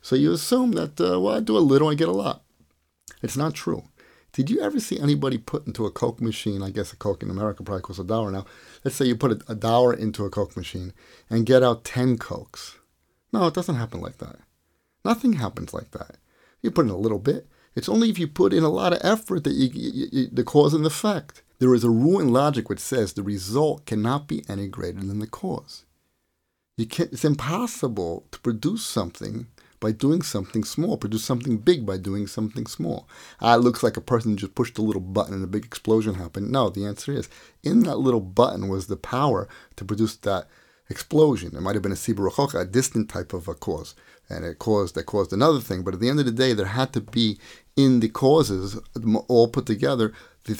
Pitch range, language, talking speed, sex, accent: 100-135 Hz, English, 230 wpm, male, American